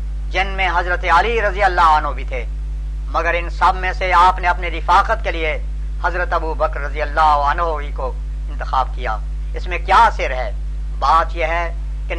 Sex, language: female, Urdu